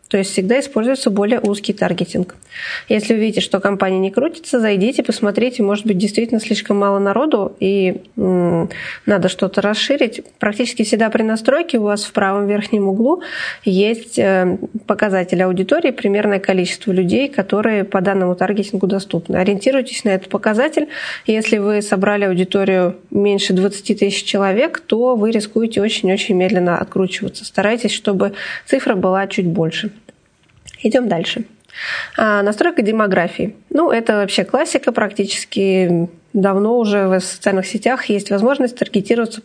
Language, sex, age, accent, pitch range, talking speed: Russian, female, 20-39, native, 195-235 Hz, 135 wpm